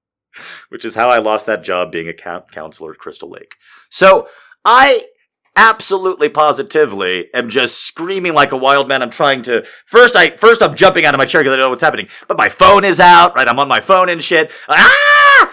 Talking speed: 215 wpm